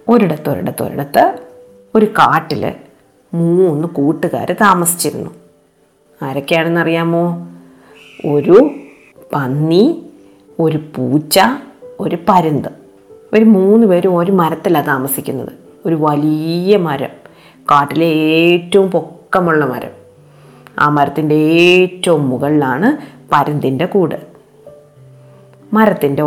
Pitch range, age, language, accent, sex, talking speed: 145-185 Hz, 30-49, Malayalam, native, female, 80 wpm